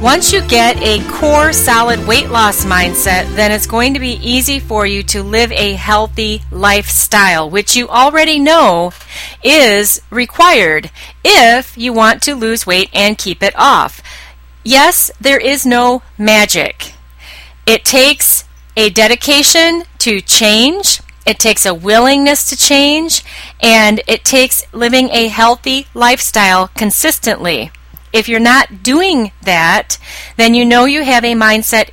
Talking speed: 140 wpm